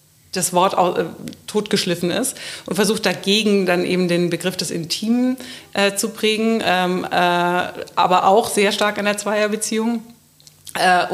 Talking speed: 140 wpm